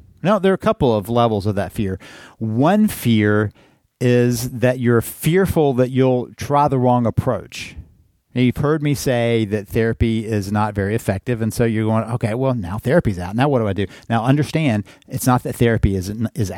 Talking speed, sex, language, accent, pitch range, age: 200 wpm, male, English, American, 105-130 Hz, 50-69